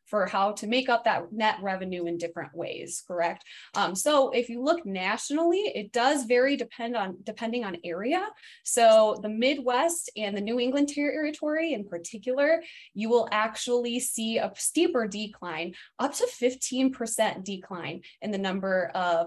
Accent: American